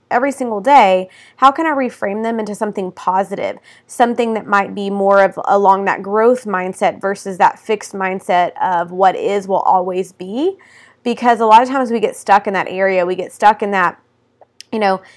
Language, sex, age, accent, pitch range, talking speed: English, female, 20-39, American, 190-220 Hz, 195 wpm